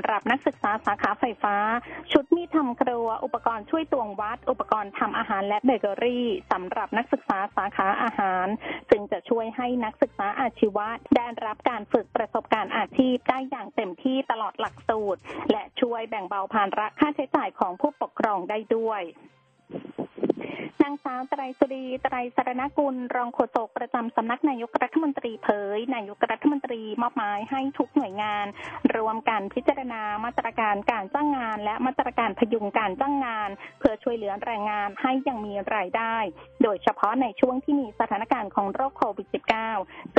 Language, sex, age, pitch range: Thai, female, 20-39, 215-275 Hz